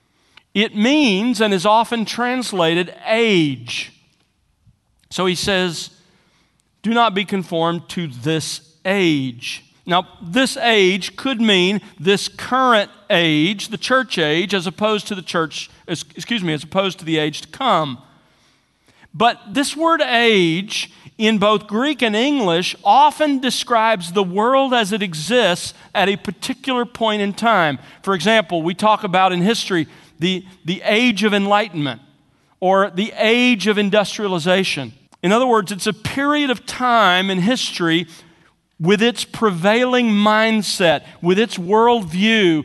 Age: 40-59